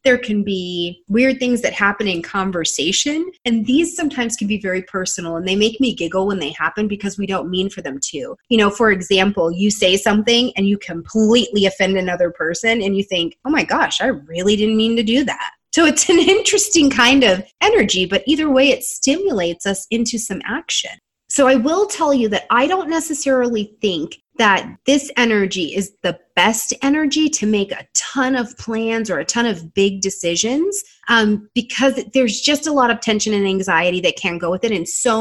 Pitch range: 190-265 Hz